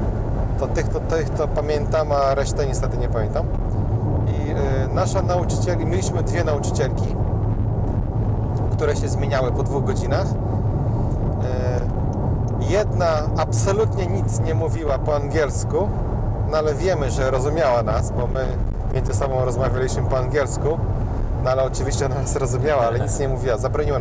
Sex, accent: male, native